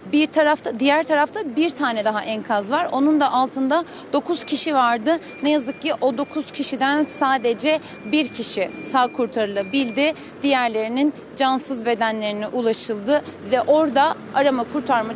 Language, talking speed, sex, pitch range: Turkish, 135 wpm, female, 260-310 Hz